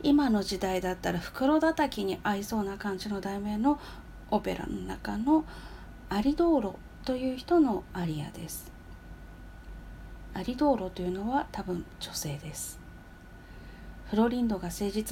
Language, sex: Japanese, female